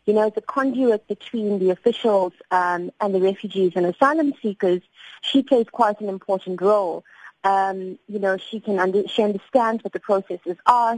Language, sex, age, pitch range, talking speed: English, female, 30-49, 190-235 Hz, 165 wpm